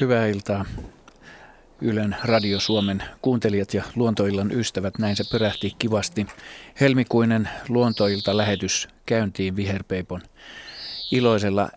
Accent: native